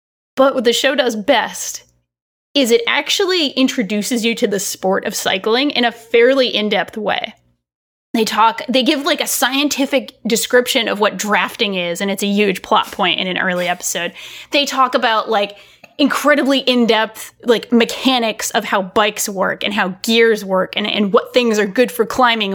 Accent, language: American, English